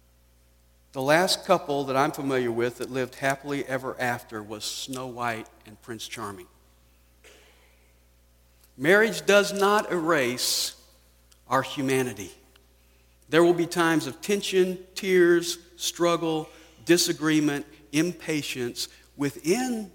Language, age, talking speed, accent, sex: English, 50-69, 105 wpm, American, male